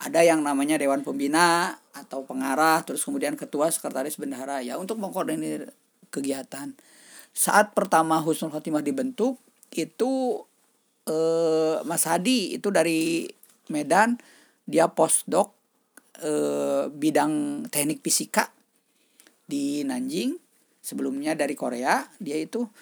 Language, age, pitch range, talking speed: Indonesian, 50-69, 150-235 Hz, 110 wpm